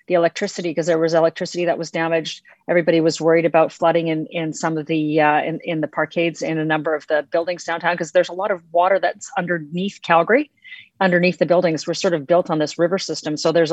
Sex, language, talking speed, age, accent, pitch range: female, English, 230 wpm, 40-59, American, 160-175 Hz